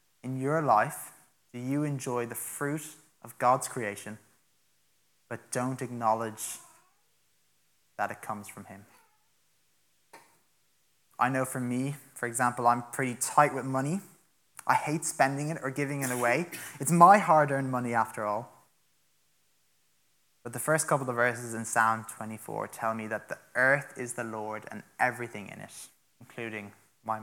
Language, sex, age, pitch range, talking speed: English, male, 20-39, 110-140 Hz, 150 wpm